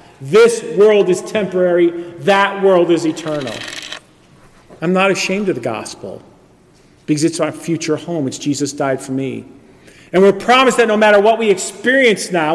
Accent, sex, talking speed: American, male, 165 wpm